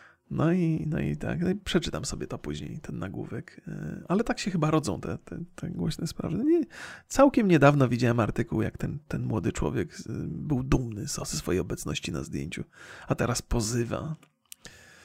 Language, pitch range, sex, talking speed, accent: Polish, 130-175 Hz, male, 155 wpm, native